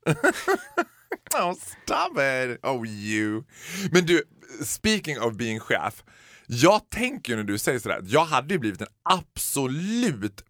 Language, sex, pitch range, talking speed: Swedish, male, 105-165 Hz, 130 wpm